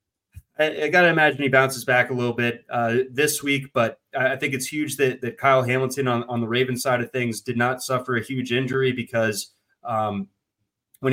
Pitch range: 115-130 Hz